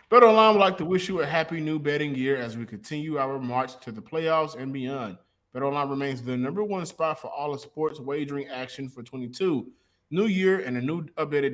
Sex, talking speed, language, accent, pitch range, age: male, 210 wpm, English, American, 130-160 Hz, 20-39